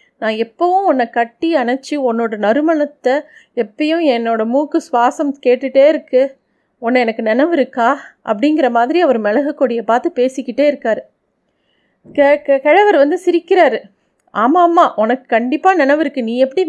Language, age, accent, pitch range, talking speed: Tamil, 30-49, native, 235-305 Hz, 135 wpm